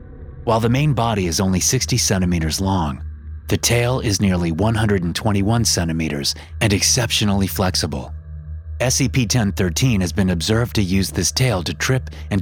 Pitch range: 75-110 Hz